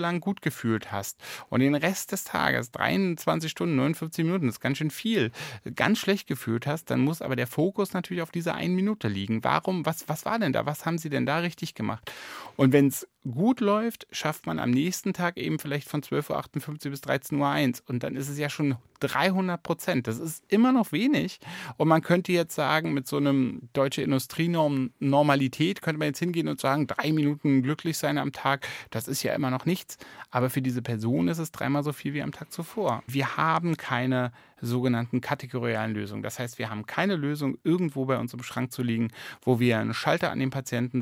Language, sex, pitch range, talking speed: German, male, 120-160 Hz, 210 wpm